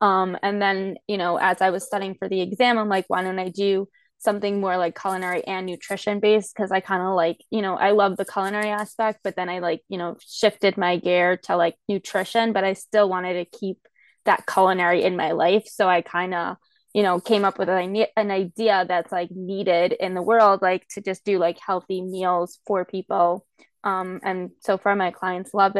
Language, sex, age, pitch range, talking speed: English, female, 20-39, 185-205 Hz, 220 wpm